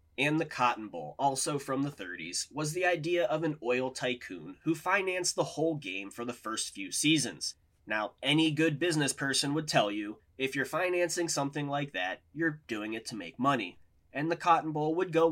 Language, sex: English, male